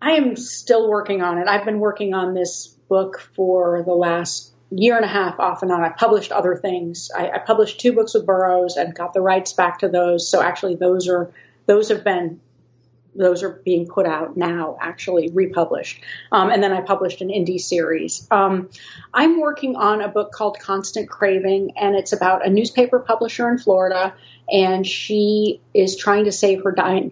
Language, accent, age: English, American, 40-59